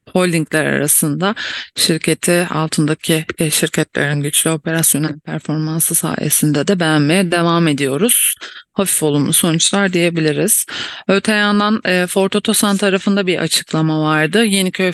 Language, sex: English, female